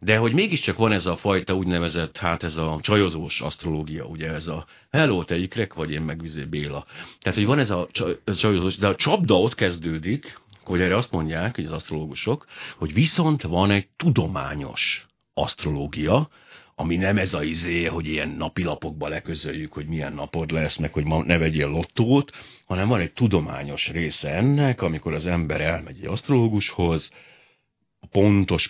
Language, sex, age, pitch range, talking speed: Hungarian, male, 60-79, 80-105 Hz, 170 wpm